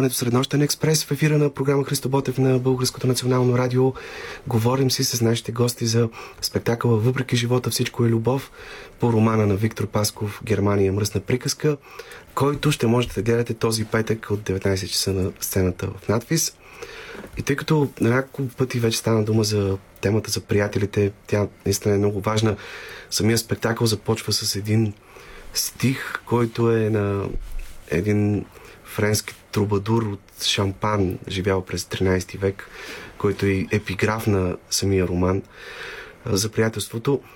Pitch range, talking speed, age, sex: 100-125 Hz, 140 wpm, 30-49, male